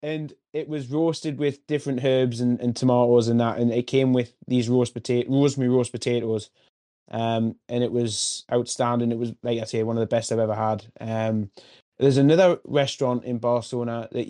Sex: male